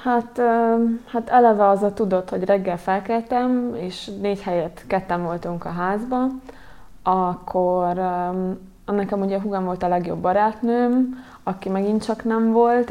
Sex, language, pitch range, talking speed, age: female, Hungarian, 185-215 Hz, 140 wpm, 20-39